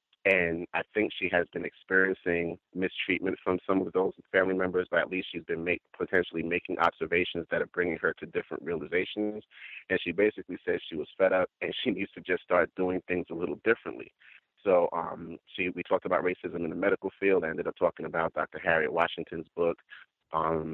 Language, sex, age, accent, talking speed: English, male, 30-49, American, 195 wpm